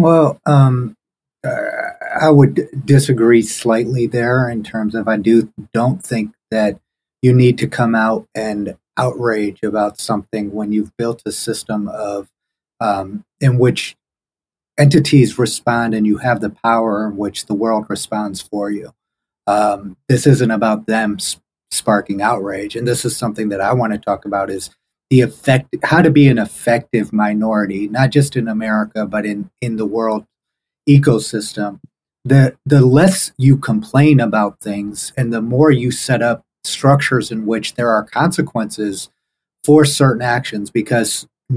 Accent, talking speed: American, 160 wpm